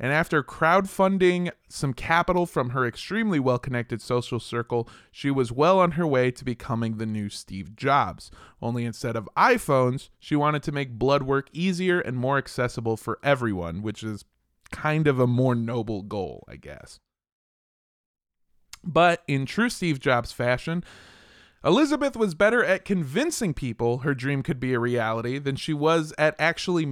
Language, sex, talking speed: English, male, 160 wpm